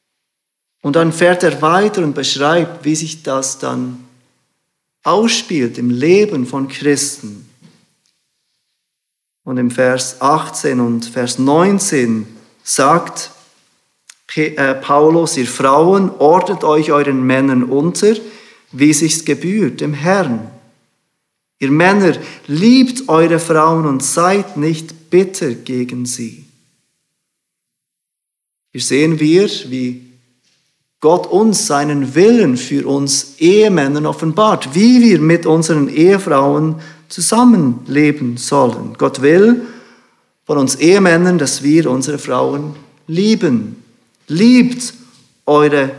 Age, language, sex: 40-59, German, male